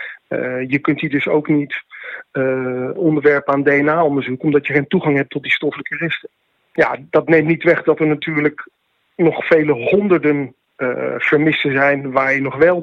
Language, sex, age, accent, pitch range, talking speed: Dutch, male, 40-59, Dutch, 135-155 Hz, 180 wpm